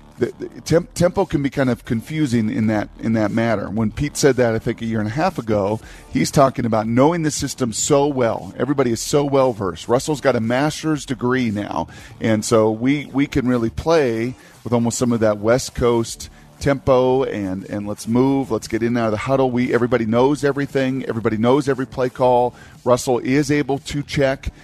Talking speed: 195 wpm